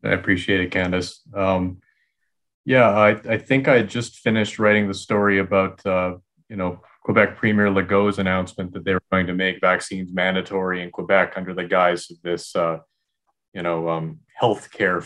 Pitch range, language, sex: 95-115 Hz, English, male